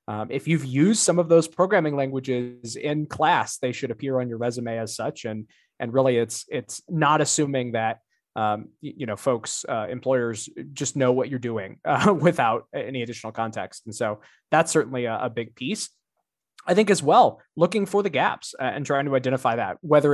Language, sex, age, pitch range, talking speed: English, male, 20-39, 120-150 Hz, 195 wpm